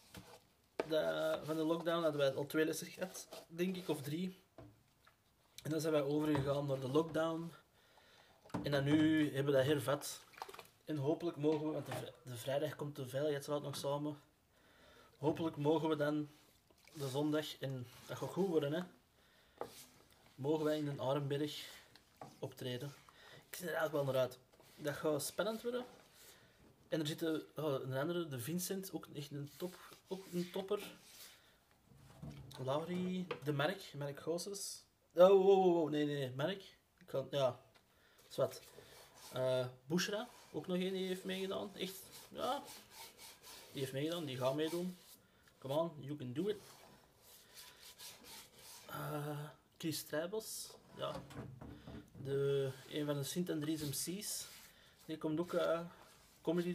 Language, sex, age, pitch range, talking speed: Dutch, male, 20-39, 140-170 Hz, 150 wpm